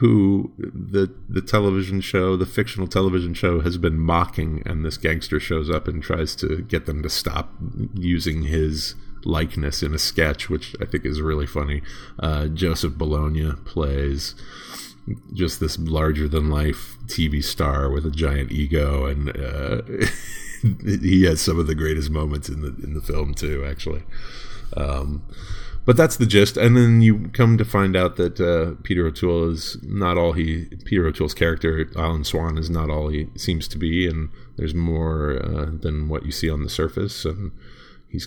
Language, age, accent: English, 30-49, American